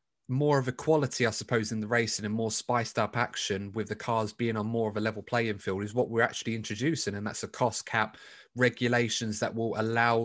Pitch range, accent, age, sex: 105-125 Hz, British, 20-39, male